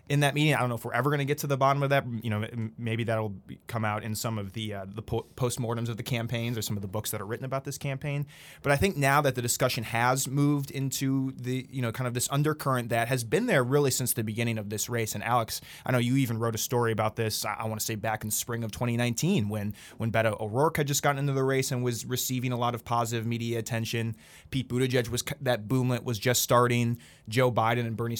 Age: 20-39